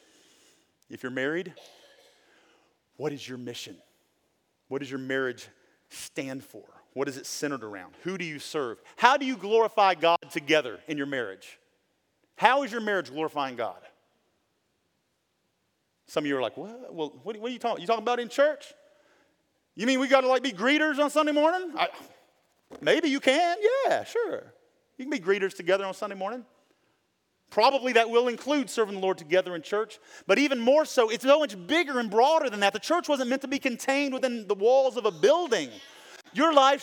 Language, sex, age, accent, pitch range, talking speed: English, male, 40-59, American, 195-285 Hz, 180 wpm